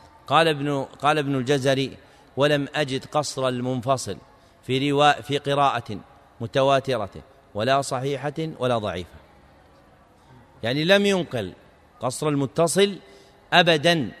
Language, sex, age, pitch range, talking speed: Arabic, male, 40-59, 115-160 Hz, 90 wpm